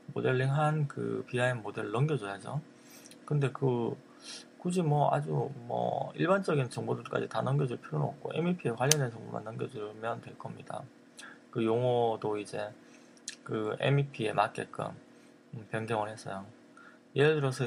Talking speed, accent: 110 wpm, Korean